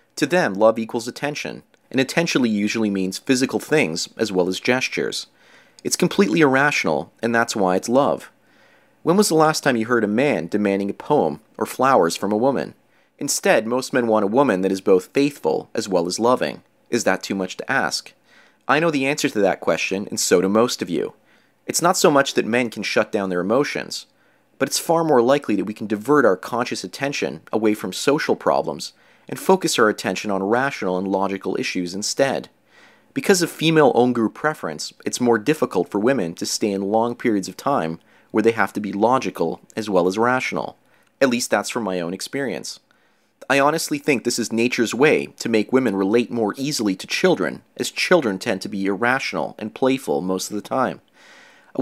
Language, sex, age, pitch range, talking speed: English, male, 30-49, 100-135 Hz, 200 wpm